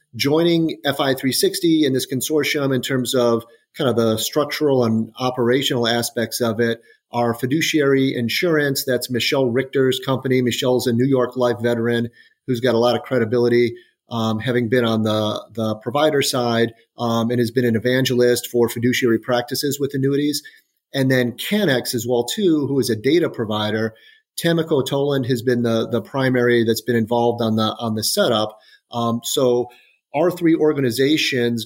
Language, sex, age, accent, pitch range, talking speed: English, male, 30-49, American, 120-135 Hz, 170 wpm